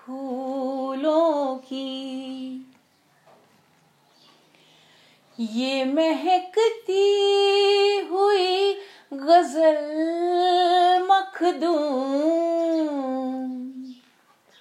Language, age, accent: English, 30-49, Indian